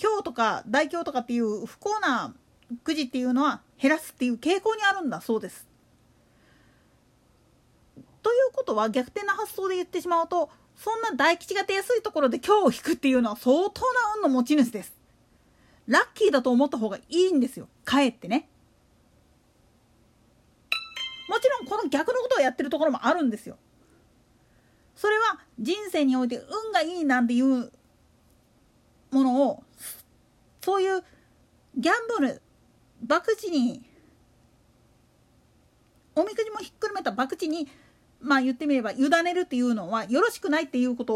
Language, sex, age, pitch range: Japanese, female, 40-59, 255-390 Hz